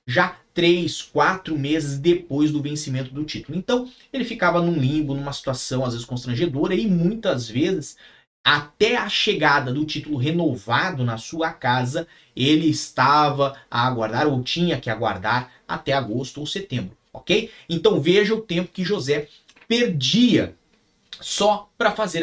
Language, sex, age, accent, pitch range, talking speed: Portuguese, male, 30-49, Brazilian, 140-195 Hz, 145 wpm